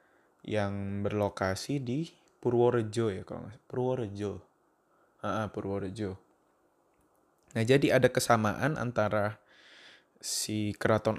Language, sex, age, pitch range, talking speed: Indonesian, male, 20-39, 105-125 Hz, 85 wpm